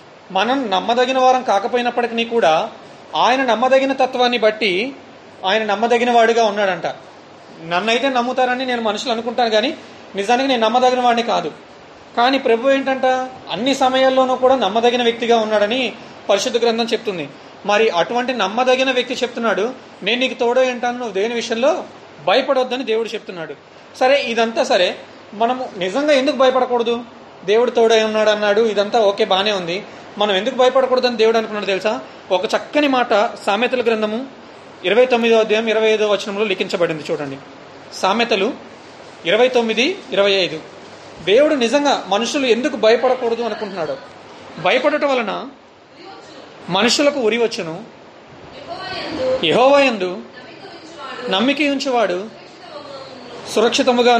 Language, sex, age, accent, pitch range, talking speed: Telugu, male, 30-49, native, 210-255 Hz, 115 wpm